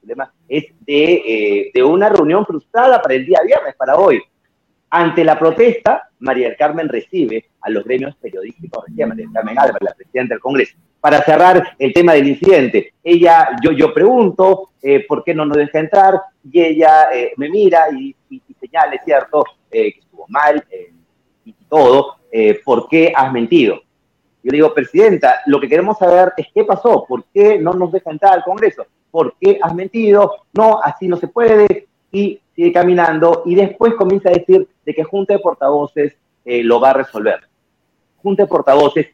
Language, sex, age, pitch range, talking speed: Spanish, male, 40-59, 150-235 Hz, 185 wpm